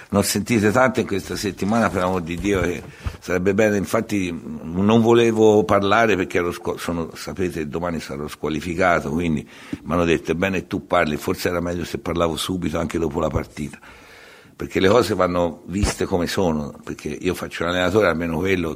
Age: 60-79